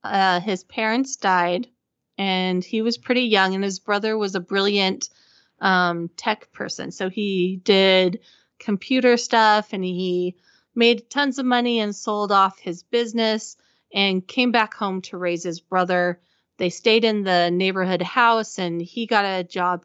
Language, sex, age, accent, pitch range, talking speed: English, female, 30-49, American, 180-225 Hz, 160 wpm